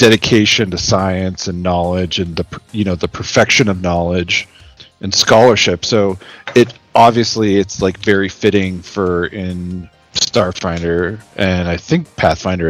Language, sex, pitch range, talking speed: English, male, 90-110 Hz, 135 wpm